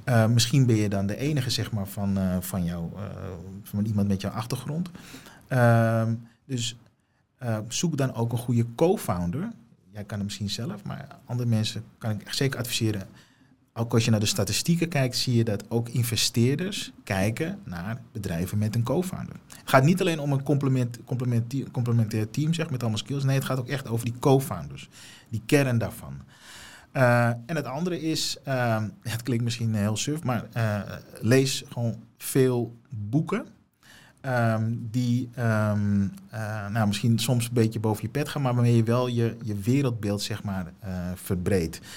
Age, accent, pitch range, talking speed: 40-59, Dutch, 105-130 Hz, 165 wpm